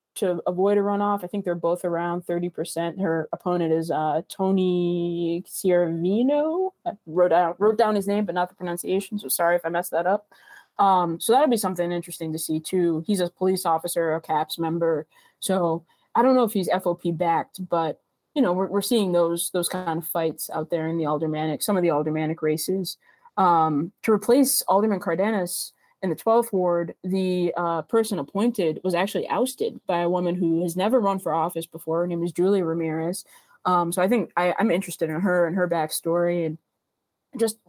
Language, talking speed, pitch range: English, 195 wpm, 170-200 Hz